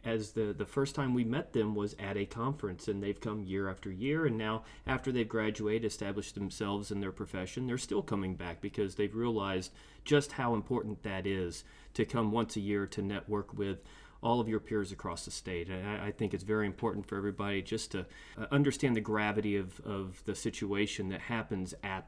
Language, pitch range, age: English, 100-120 Hz, 30-49